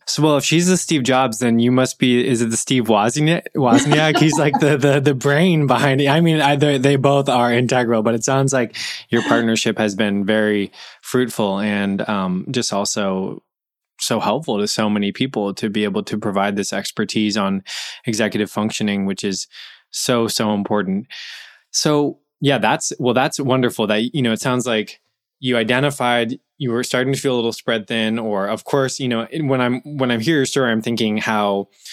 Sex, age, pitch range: male, 20-39, 105-135 Hz